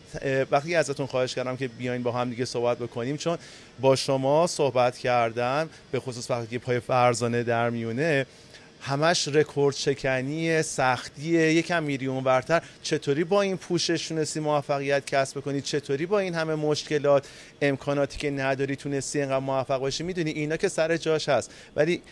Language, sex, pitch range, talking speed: Persian, male, 120-150 Hz, 155 wpm